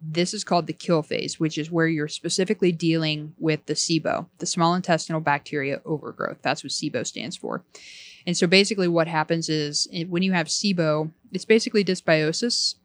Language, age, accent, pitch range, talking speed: English, 20-39, American, 155-180 Hz, 180 wpm